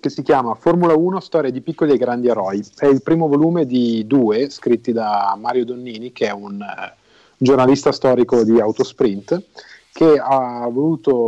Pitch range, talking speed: 115-140 Hz, 170 wpm